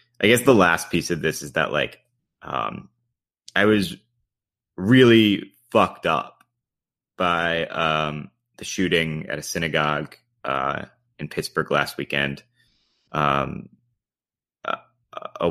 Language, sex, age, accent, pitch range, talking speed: English, male, 30-49, American, 75-100 Hz, 120 wpm